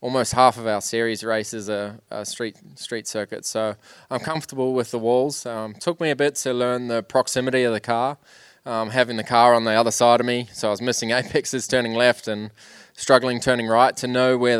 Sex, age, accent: male, 20-39, Australian